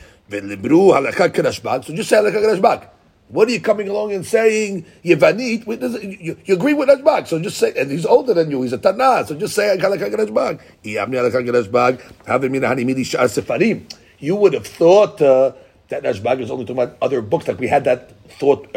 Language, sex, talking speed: English, male, 145 wpm